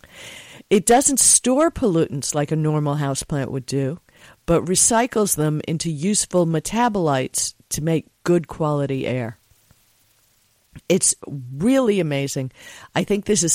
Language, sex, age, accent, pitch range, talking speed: English, female, 50-69, American, 140-180 Hz, 125 wpm